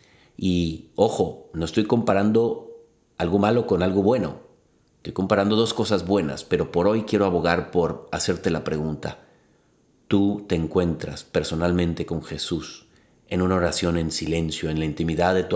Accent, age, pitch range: Mexican, 40-59, 90-120 Hz